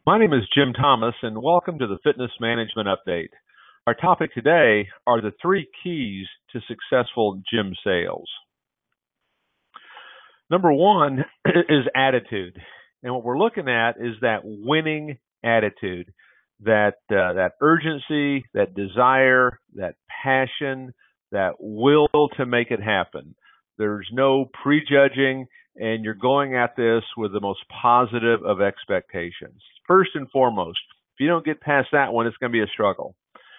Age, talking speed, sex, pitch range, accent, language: 50-69, 145 wpm, male, 110-140 Hz, American, English